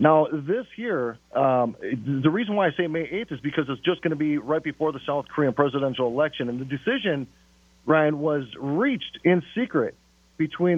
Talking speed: 190 wpm